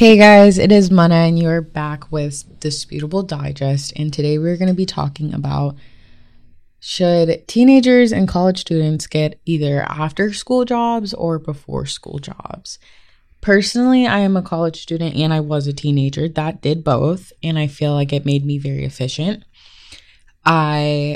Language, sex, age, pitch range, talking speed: English, female, 20-39, 140-165 Hz, 165 wpm